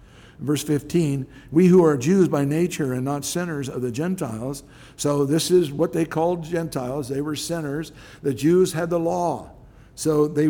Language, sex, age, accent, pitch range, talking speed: English, male, 60-79, American, 125-160 Hz, 175 wpm